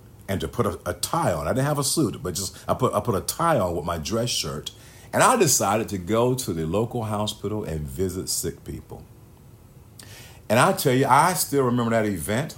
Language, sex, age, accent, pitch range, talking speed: English, male, 50-69, American, 90-125 Hz, 225 wpm